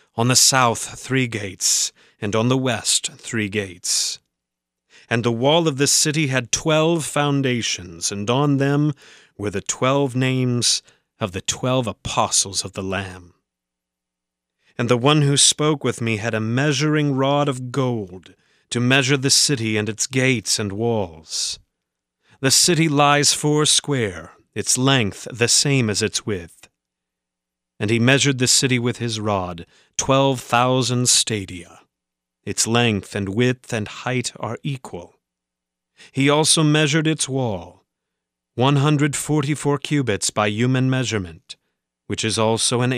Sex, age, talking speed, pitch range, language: male, 30-49, 140 wpm, 100-135 Hz, English